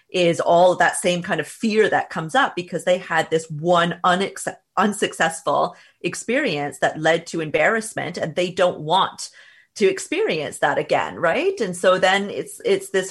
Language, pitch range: English, 165-210 Hz